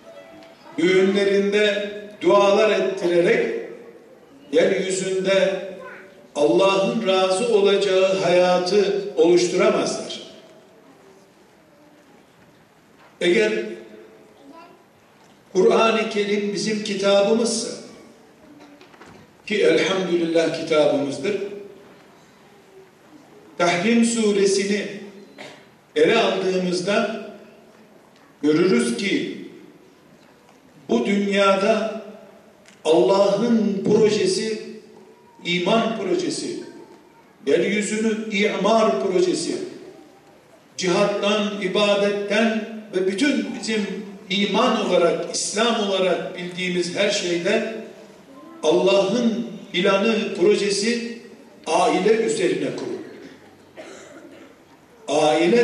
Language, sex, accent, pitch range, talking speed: Turkish, male, native, 195-220 Hz, 55 wpm